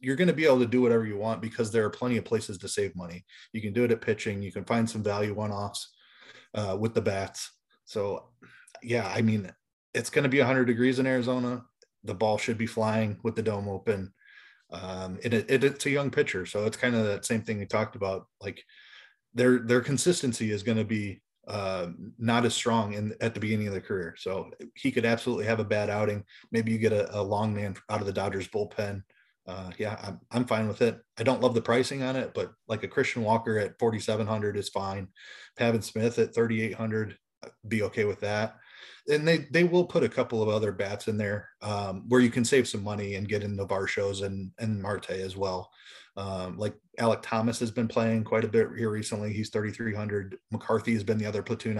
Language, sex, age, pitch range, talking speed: English, male, 20-39, 105-120 Hz, 220 wpm